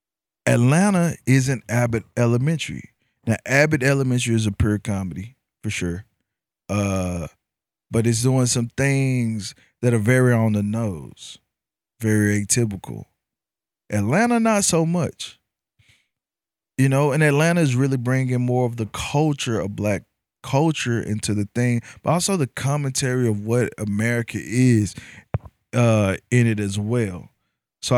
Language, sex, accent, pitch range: English, male, American, 110-135 Hz